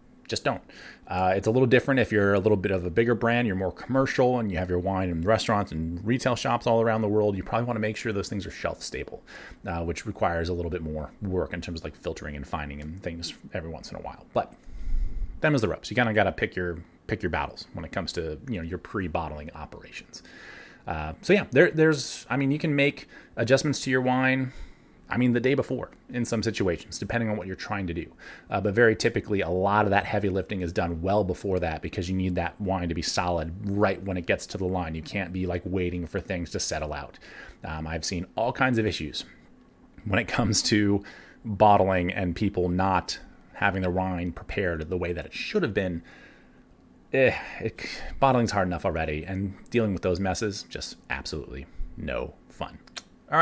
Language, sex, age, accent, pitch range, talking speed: English, male, 30-49, American, 85-110 Hz, 220 wpm